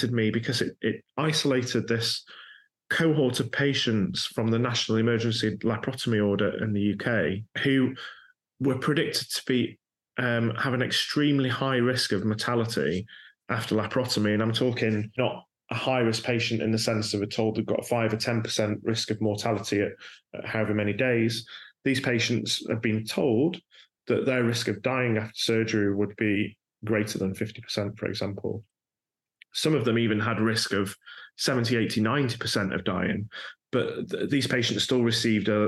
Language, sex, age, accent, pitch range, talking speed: English, male, 30-49, British, 110-125 Hz, 165 wpm